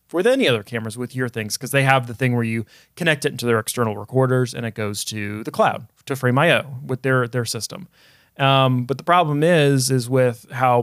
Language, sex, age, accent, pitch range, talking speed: English, male, 30-49, American, 115-135 Hz, 220 wpm